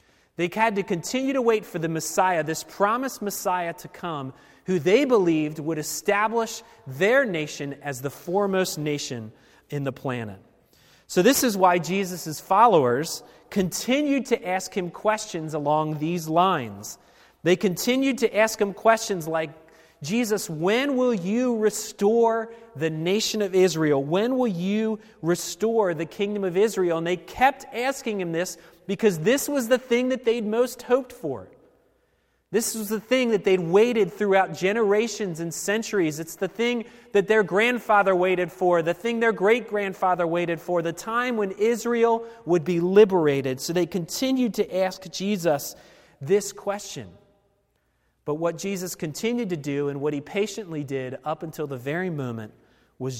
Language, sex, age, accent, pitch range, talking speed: English, male, 30-49, American, 160-220 Hz, 155 wpm